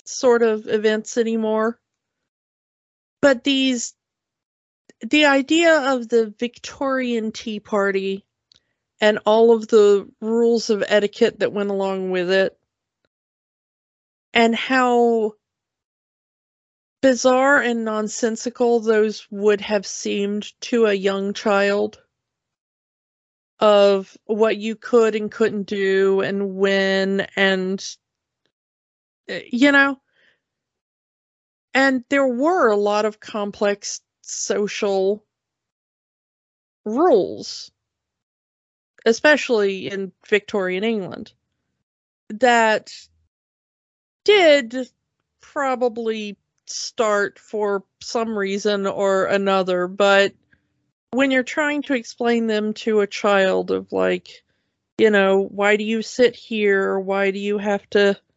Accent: American